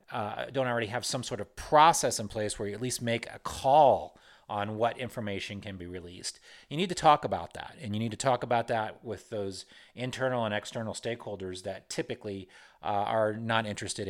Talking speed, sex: 205 wpm, male